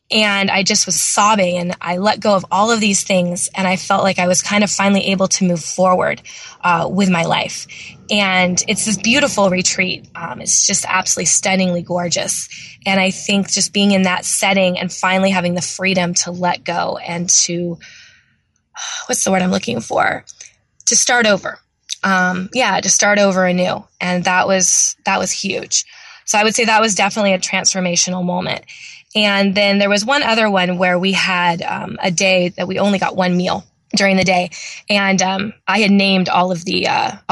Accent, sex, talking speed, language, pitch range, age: American, female, 195 wpm, English, 185-205 Hz, 20-39